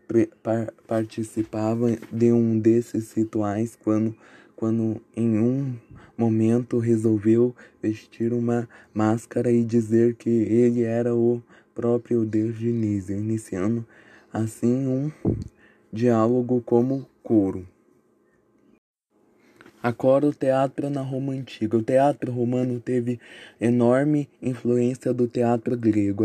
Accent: Brazilian